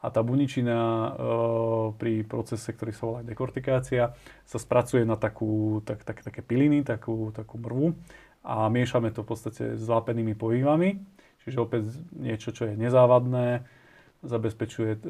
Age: 30-49